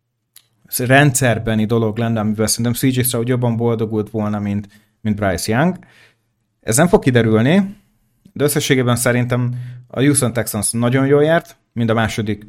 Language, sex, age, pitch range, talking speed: Hungarian, male, 30-49, 110-130 Hz, 140 wpm